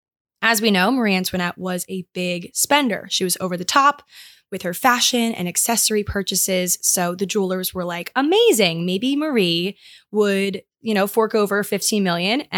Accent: American